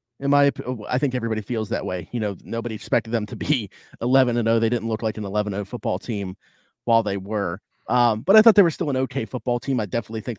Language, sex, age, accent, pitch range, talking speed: English, male, 30-49, American, 110-130 Hz, 250 wpm